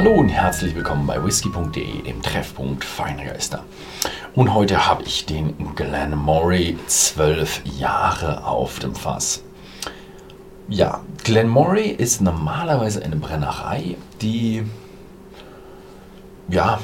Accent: German